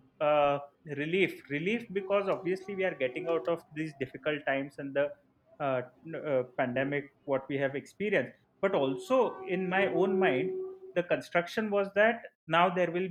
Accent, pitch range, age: Indian, 140-190 Hz, 30-49